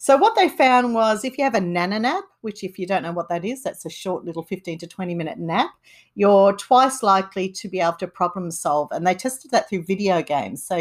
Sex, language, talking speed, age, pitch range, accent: female, English, 250 wpm, 50-69, 165-210 Hz, Australian